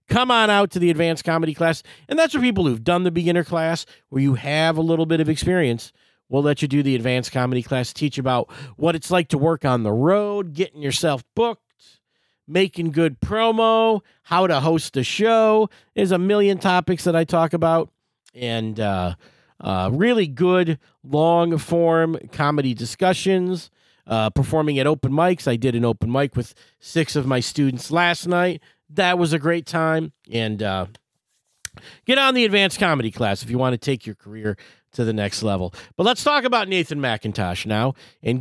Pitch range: 130-180 Hz